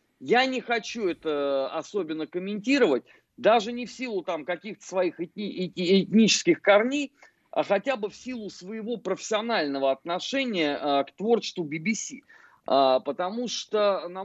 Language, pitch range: Russian, 155-220 Hz